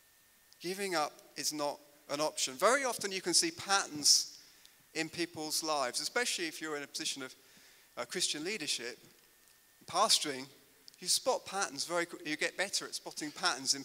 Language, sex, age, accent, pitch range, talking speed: English, male, 30-49, British, 160-215 Hz, 165 wpm